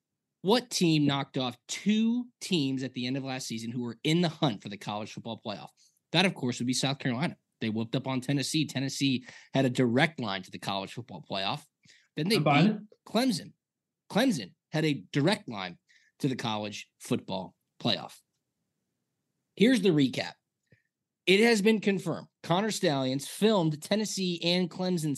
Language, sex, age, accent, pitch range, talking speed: English, male, 20-39, American, 130-190 Hz, 170 wpm